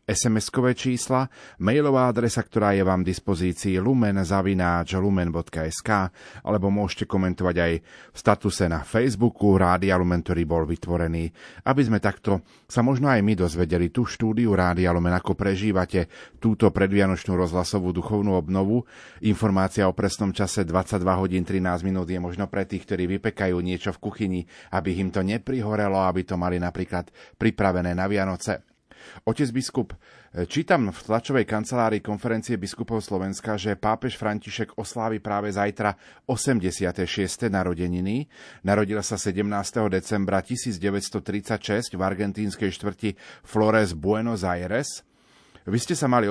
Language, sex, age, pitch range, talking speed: Slovak, male, 40-59, 90-110 Hz, 130 wpm